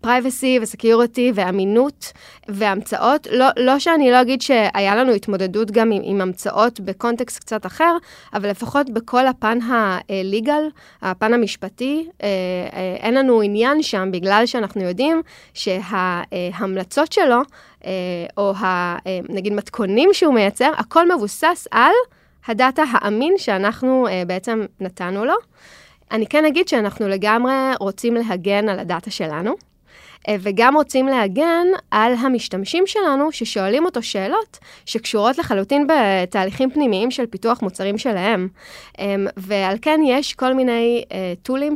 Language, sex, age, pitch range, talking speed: Hebrew, female, 20-39, 195-255 Hz, 130 wpm